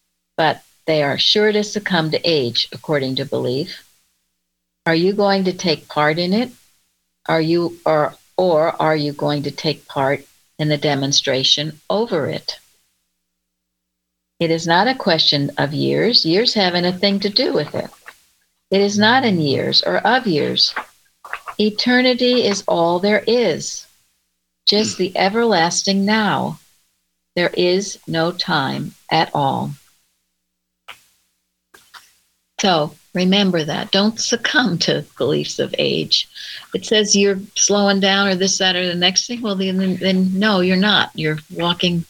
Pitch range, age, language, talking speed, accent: 115-190 Hz, 60-79, English, 145 wpm, American